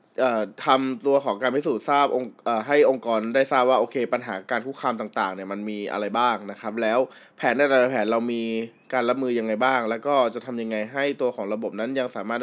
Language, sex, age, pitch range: Thai, male, 20-39, 120-150 Hz